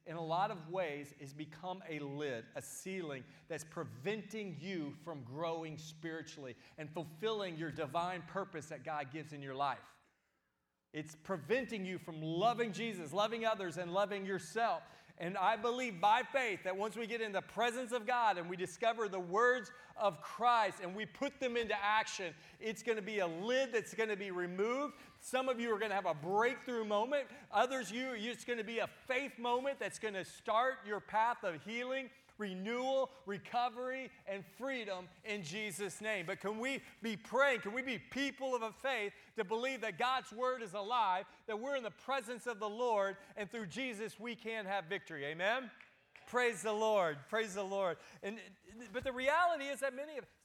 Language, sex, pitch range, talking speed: English, male, 175-240 Hz, 190 wpm